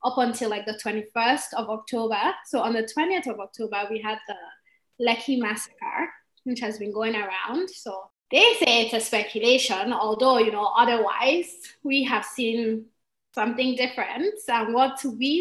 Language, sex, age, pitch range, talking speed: English, female, 20-39, 215-265 Hz, 160 wpm